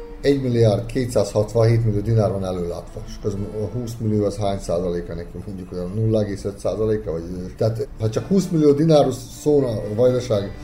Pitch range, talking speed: 105-125 Hz, 165 wpm